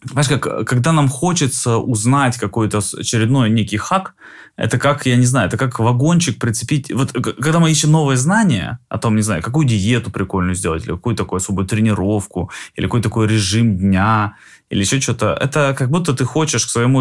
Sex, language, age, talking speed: male, Russian, 20-39, 185 wpm